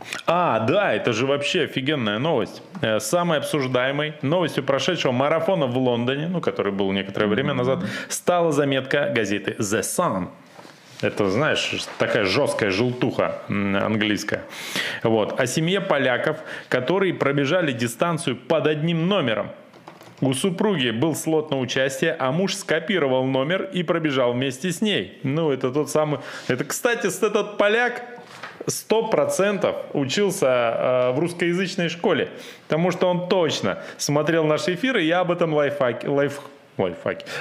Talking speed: 130 wpm